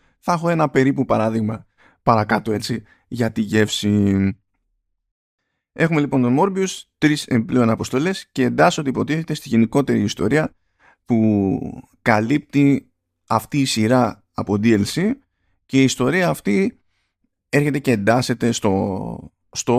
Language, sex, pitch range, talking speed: Greek, male, 105-135 Hz, 120 wpm